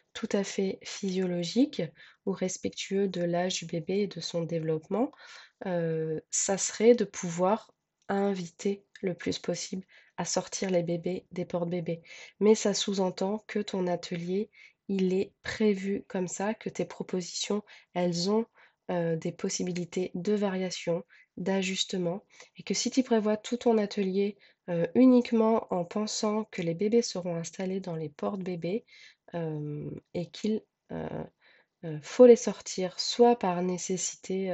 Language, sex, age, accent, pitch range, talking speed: French, female, 20-39, French, 175-205 Hz, 145 wpm